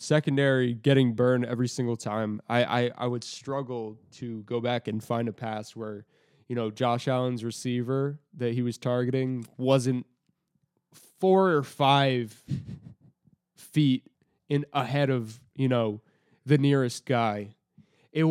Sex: male